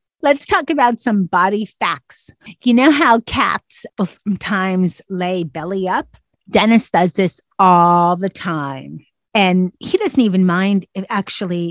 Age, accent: 40-59, American